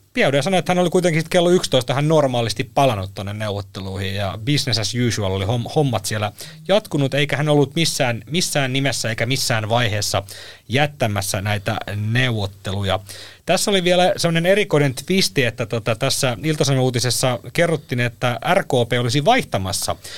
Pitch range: 105-145 Hz